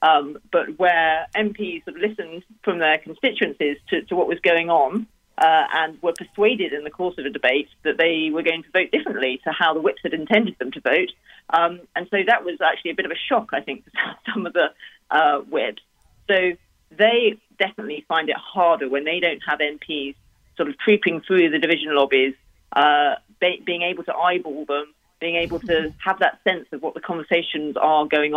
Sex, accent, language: female, British, English